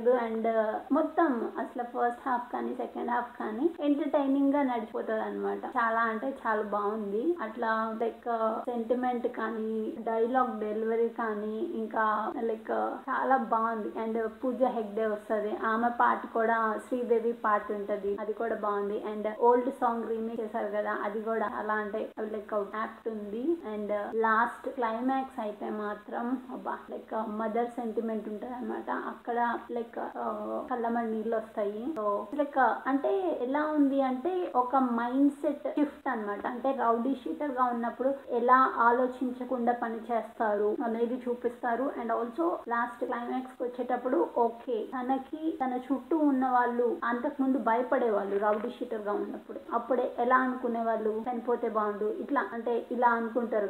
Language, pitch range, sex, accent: Telugu, 220-255 Hz, female, native